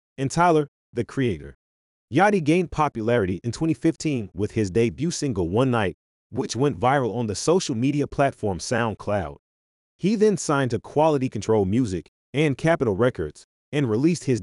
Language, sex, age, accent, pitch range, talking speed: English, male, 30-49, American, 105-145 Hz, 155 wpm